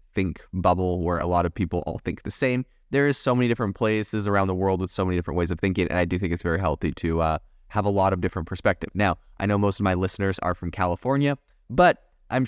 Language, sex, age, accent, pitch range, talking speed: English, male, 20-39, American, 90-105 Hz, 260 wpm